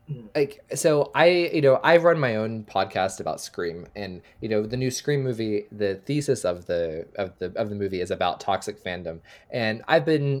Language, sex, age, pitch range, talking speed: English, male, 20-39, 105-145 Hz, 200 wpm